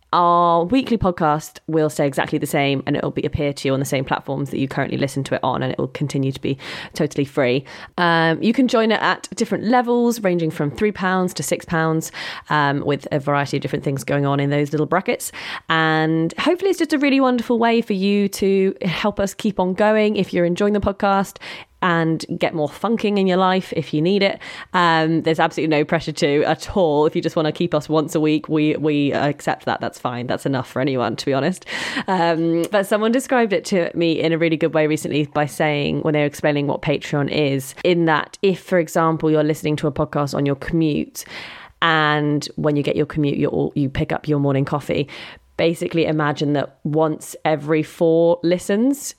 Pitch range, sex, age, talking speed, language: 150-185 Hz, female, 20-39, 220 wpm, English